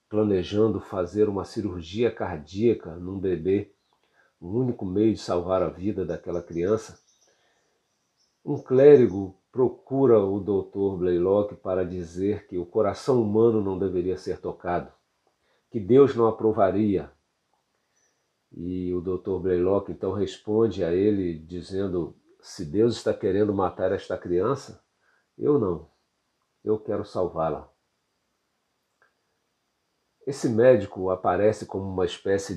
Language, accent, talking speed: Portuguese, Brazilian, 120 wpm